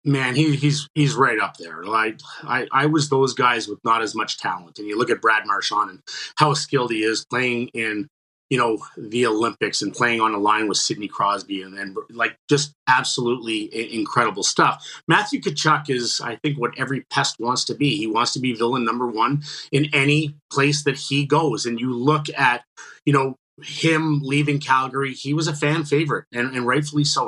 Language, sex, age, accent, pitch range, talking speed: English, male, 30-49, American, 125-155 Hz, 200 wpm